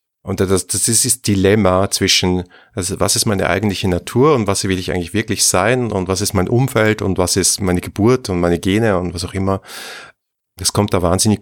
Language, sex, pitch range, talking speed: German, male, 90-110 Hz, 215 wpm